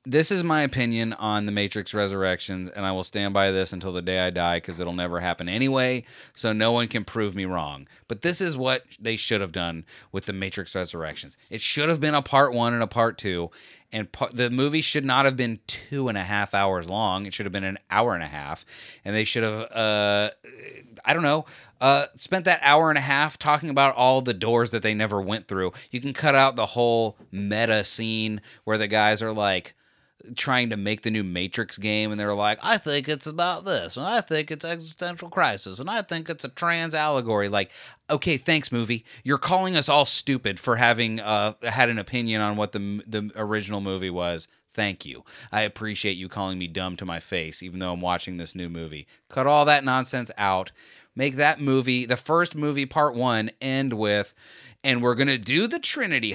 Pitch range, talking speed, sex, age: 100-135 Hz, 220 wpm, male, 30-49